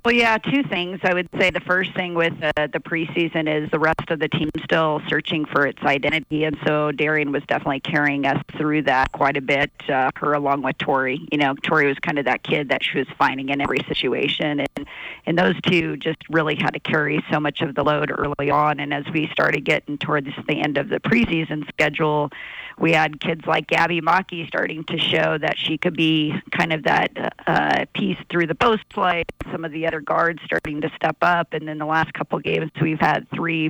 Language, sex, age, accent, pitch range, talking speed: English, female, 40-59, American, 150-165 Hz, 225 wpm